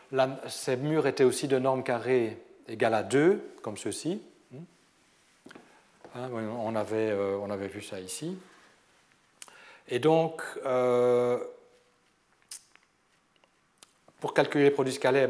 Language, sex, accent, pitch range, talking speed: French, male, French, 120-145 Hz, 120 wpm